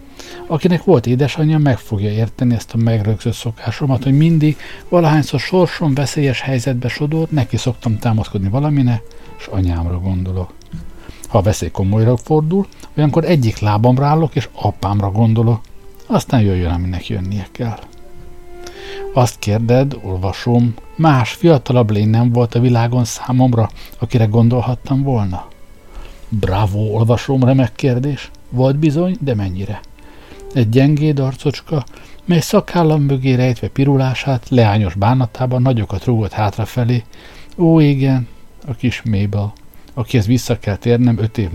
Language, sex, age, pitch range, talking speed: Hungarian, male, 60-79, 105-135 Hz, 125 wpm